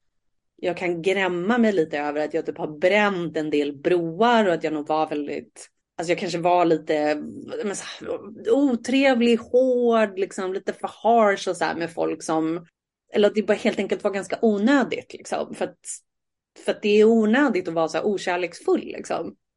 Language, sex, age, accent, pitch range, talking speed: Swedish, female, 30-49, native, 165-240 Hz, 185 wpm